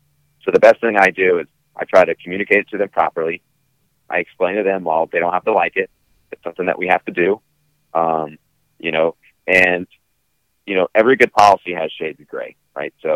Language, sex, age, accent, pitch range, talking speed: English, male, 30-49, American, 85-110 Hz, 220 wpm